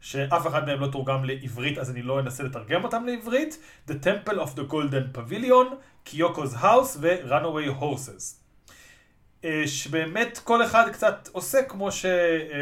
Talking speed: 145 wpm